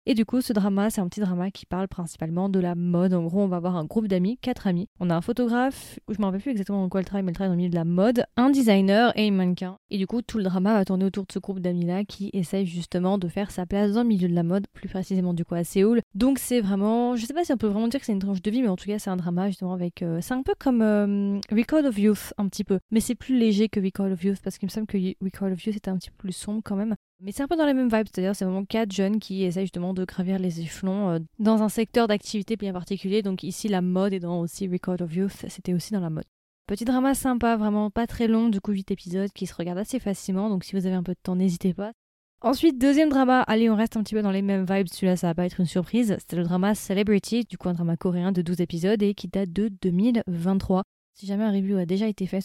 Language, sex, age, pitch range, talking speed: French, female, 20-39, 185-220 Hz, 295 wpm